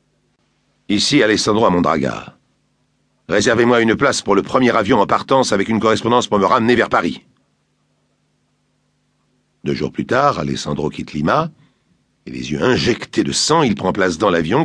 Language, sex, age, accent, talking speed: French, male, 60-79, French, 160 wpm